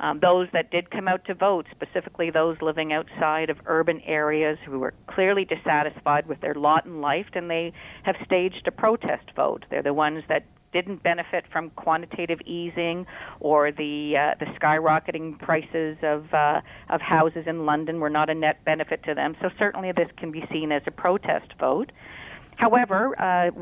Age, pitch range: 50-69, 155-185 Hz